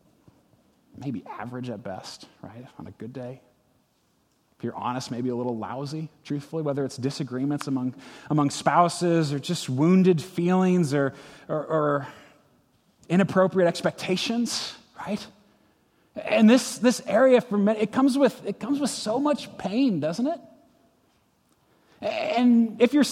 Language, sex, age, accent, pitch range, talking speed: English, male, 30-49, American, 165-250 Hz, 140 wpm